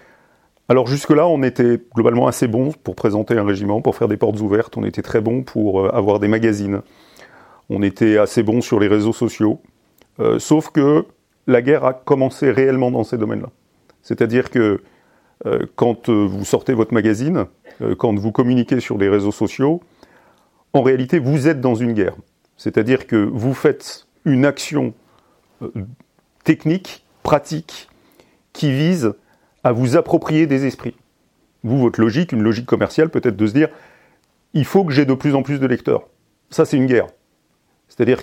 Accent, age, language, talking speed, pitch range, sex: French, 40-59, French, 170 wpm, 110-155 Hz, male